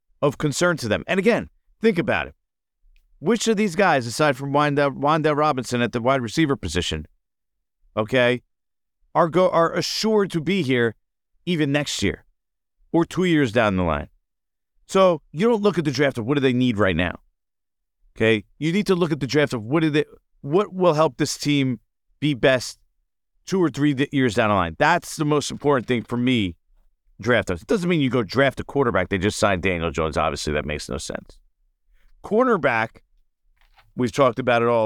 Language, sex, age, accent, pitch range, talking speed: English, male, 50-69, American, 105-155 Hz, 195 wpm